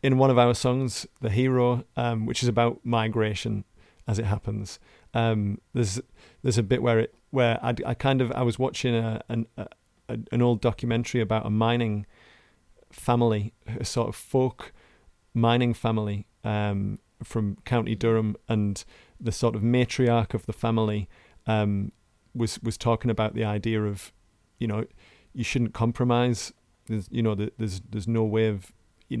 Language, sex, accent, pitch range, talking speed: English, male, British, 110-120 Hz, 165 wpm